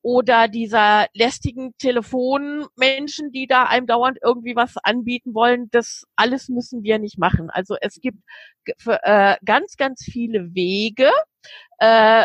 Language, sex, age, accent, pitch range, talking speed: German, female, 40-59, German, 210-275 Hz, 130 wpm